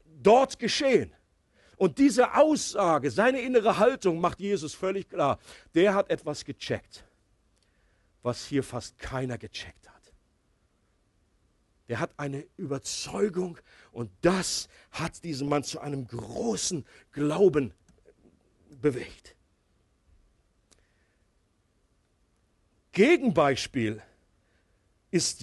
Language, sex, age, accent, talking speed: German, male, 50-69, German, 90 wpm